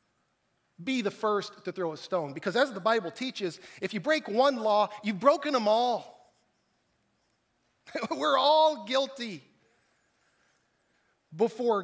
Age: 40-59